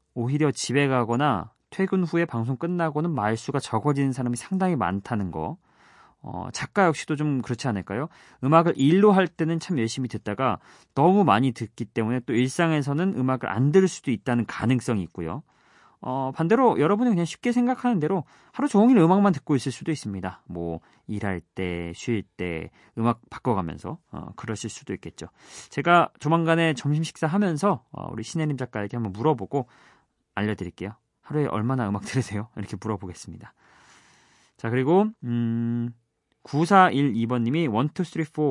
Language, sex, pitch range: Korean, male, 115-170 Hz